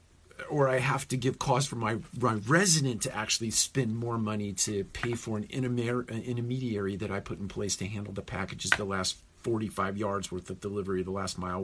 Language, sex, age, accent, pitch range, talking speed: English, male, 40-59, American, 85-110 Hz, 205 wpm